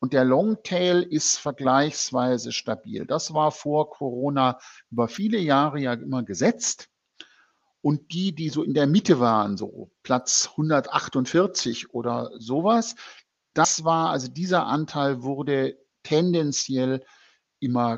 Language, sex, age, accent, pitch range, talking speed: German, male, 50-69, German, 125-165 Hz, 125 wpm